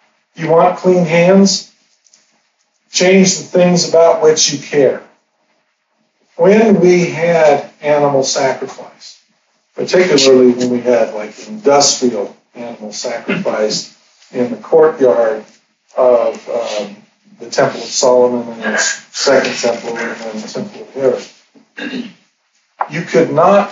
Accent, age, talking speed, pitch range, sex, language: American, 50-69, 115 wpm, 135-185 Hz, male, English